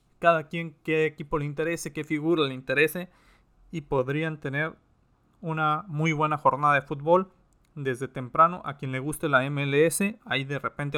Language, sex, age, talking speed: Spanish, male, 30-49, 165 wpm